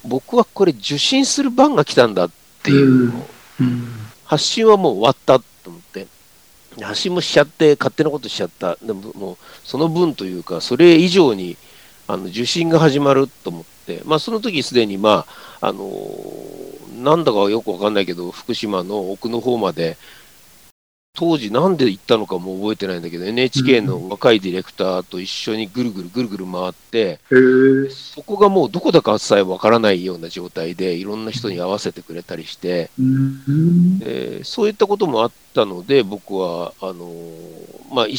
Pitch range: 100-155 Hz